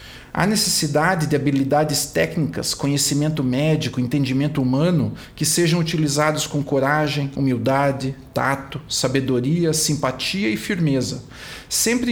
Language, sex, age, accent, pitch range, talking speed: Portuguese, male, 50-69, Brazilian, 135-185 Hz, 105 wpm